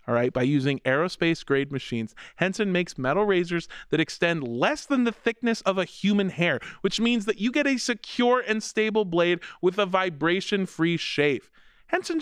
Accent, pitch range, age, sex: American, 170-235 Hz, 30-49, male